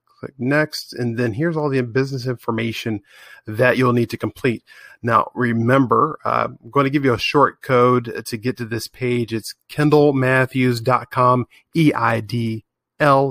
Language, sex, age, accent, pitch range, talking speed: English, male, 30-49, American, 115-130 Hz, 145 wpm